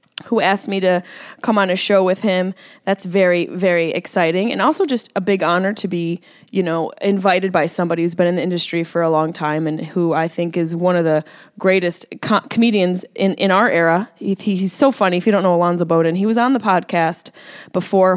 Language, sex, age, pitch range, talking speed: English, female, 20-39, 180-230 Hz, 215 wpm